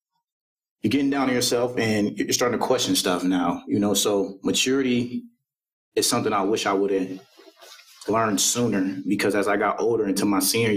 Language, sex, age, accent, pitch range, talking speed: English, male, 30-49, American, 95-120 Hz, 185 wpm